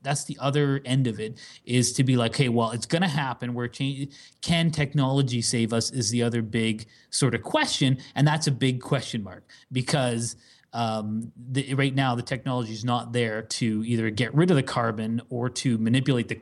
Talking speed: 195 wpm